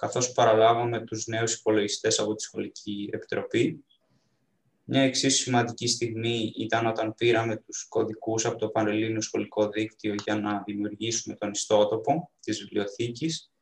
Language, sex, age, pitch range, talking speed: Greek, male, 20-39, 110-130 Hz, 130 wpm